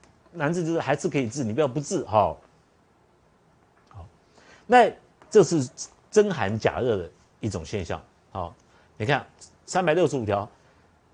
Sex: male